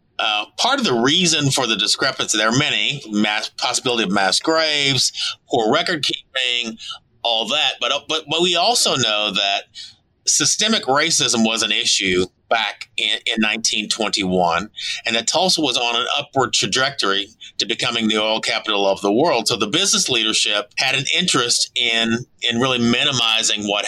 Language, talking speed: English, 165 wpm